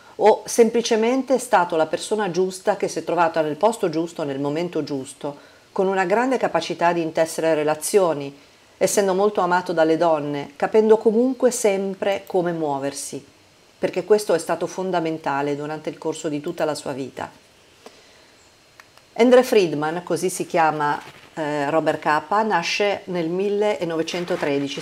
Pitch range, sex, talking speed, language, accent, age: 155-195 Hz, female, 140 wpm, Italian, native, 50-69